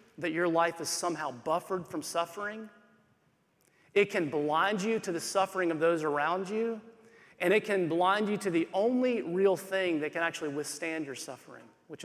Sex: male